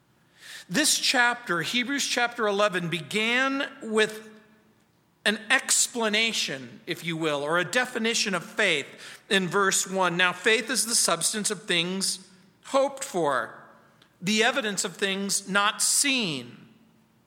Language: English